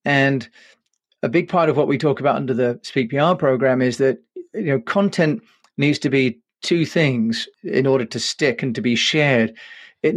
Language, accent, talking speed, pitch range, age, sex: English, British, 190 wpm, 125-180 Hz, 40-59, male